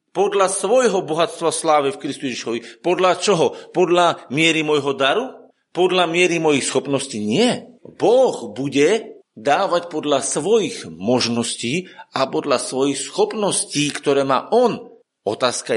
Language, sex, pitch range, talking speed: Slovak, male, 155-220 Hz, 120 wpm